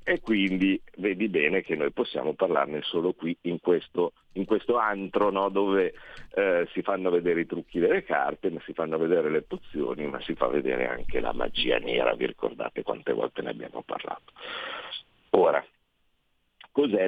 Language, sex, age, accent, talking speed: Italian, male, 50-69, native, 170 wpm